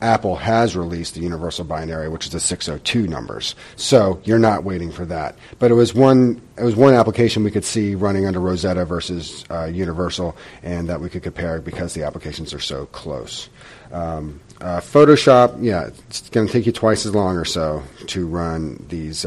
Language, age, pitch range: English, 40-59, 80-105 Hz